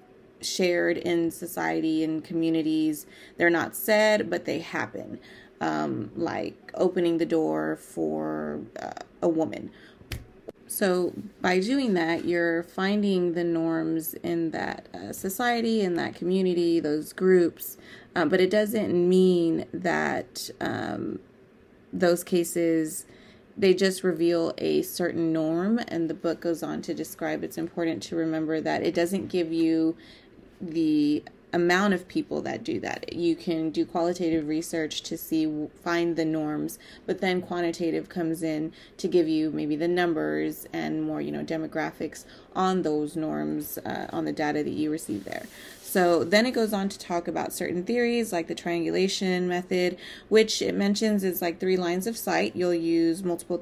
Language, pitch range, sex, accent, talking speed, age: English, 160-185 Hz, female, American, 155 wpm, 30-49